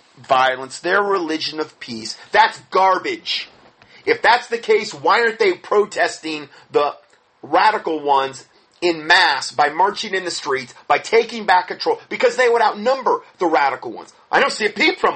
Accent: American